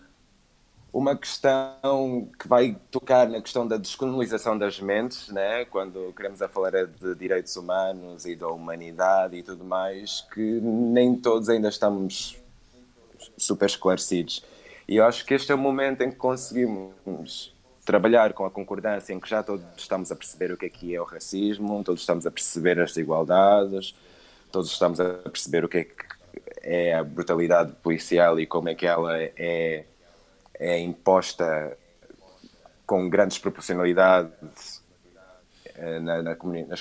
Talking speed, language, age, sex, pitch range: 150 wpm, Portuguese, 20-39, male, 85-110 Hz